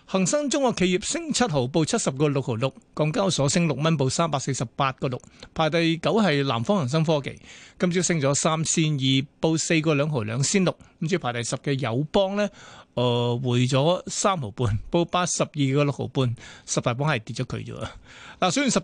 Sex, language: male, Chinese